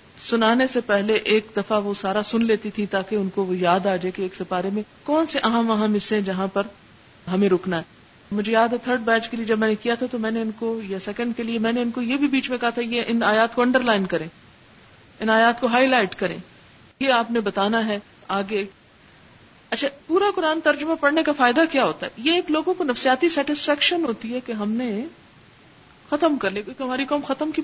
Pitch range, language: 205-280 Hz, Urdu